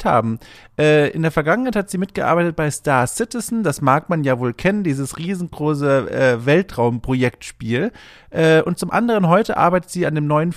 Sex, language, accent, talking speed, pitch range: male, German, German, 160 wpm, 140-190 Hz